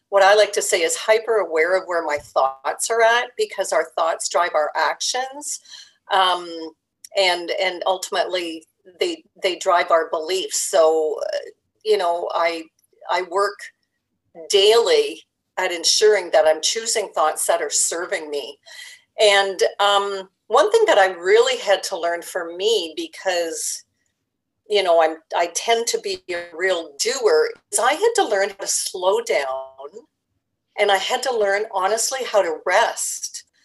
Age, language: 50-69, English